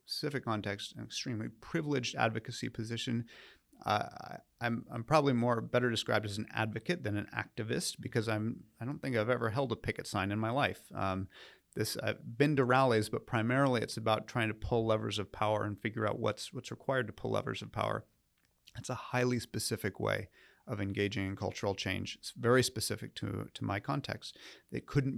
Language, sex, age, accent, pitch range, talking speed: English, male, 30-49, American, 100-120 Hz, 190 wpm